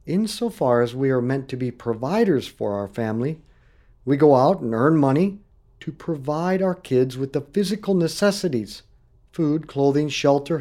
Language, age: English, 50-69